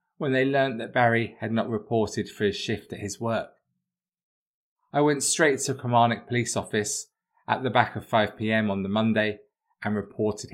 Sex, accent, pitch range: male, British, 110-155 Hz